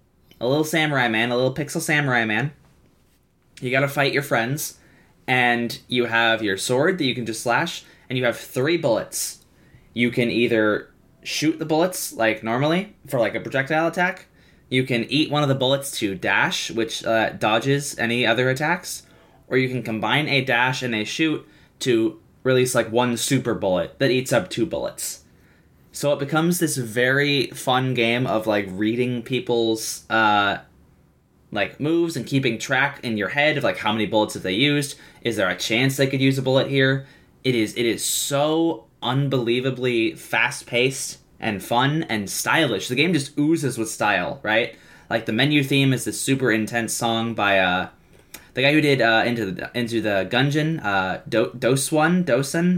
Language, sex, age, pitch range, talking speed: English, male, 20-39, 115-145 Hz, 180 wpm